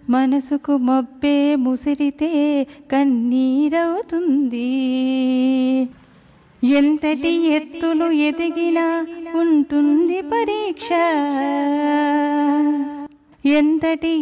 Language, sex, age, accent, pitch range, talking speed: Telugu, female, 30-49, native, 280-325 Hz, 40 wpm